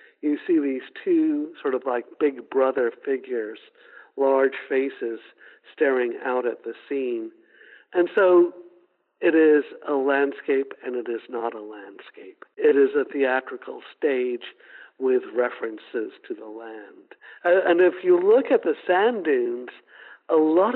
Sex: male